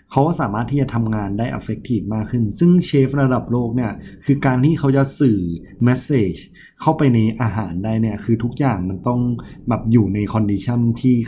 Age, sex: 20-39, male